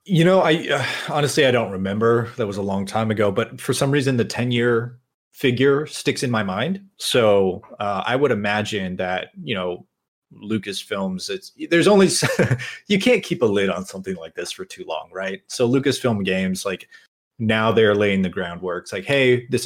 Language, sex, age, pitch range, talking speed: English, male, 30-49, 95-135 Hz, 195 wpm